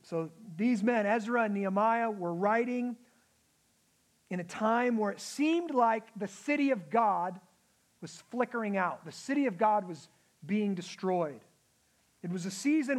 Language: English